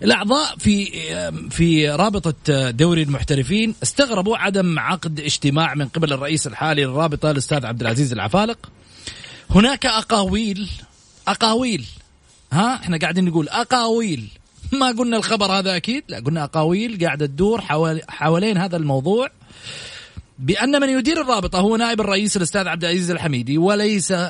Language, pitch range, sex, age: Arabic, 145-220 Hz, male, 30-49